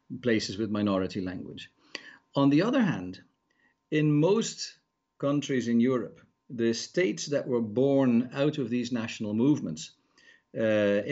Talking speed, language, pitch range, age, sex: 130 wpm, English, 115-150 Hz, 50-69, male